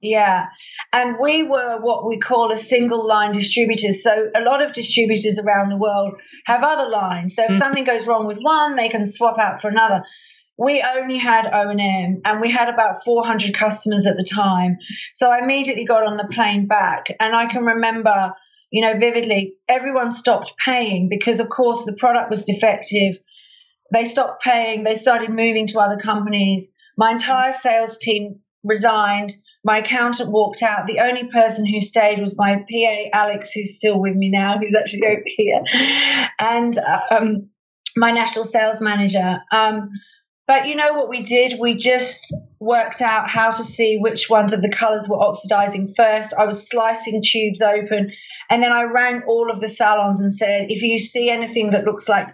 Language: English